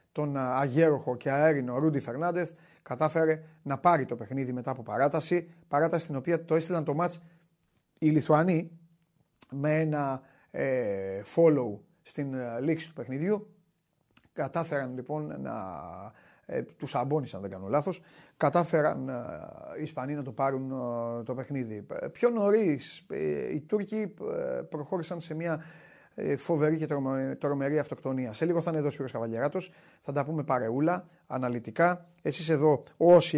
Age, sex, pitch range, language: 30-49, male, 130-170 Hz, Greek